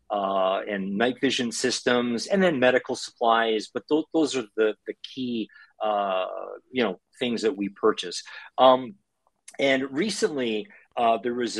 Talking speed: 150 wpm